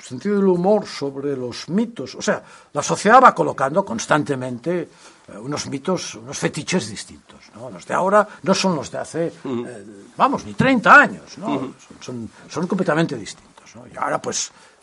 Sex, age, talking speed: male, 60-79, 175 wpm